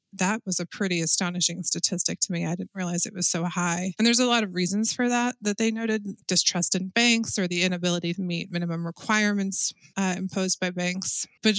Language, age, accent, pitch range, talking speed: English, 20-39, American, 170-195 Hz, 210 wpm